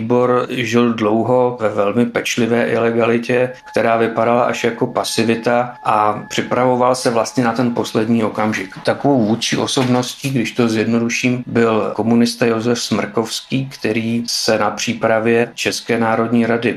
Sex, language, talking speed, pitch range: male, Czech, 130 wpm, 110-125 Hz